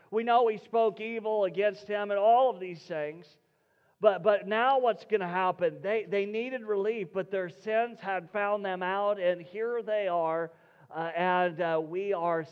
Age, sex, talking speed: 40-59, male, 185 wpm